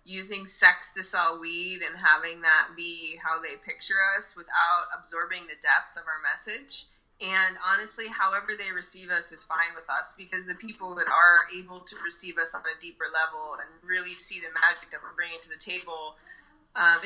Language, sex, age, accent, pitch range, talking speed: English, female, 20-39, American, 165-190 Hz, 195 wpm